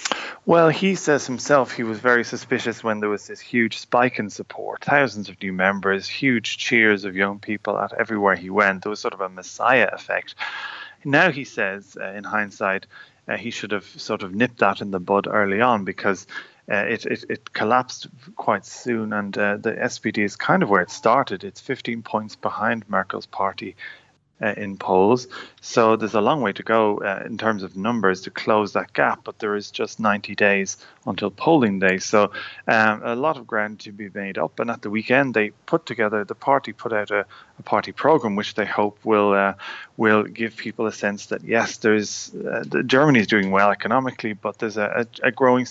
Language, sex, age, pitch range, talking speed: English, male, 30-49, 105-120 Hz, 200 wpm